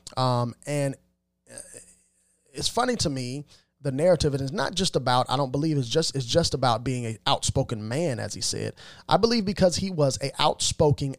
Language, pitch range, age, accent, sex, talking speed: English, 125-155 Hz, 30-49, American, male, 190 wpm